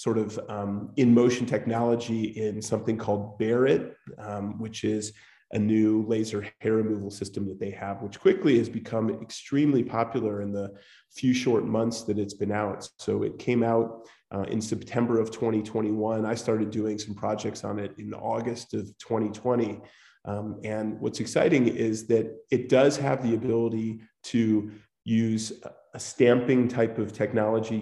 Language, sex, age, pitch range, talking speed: English, male, 30-49, 105-120 Hz, 160 wpm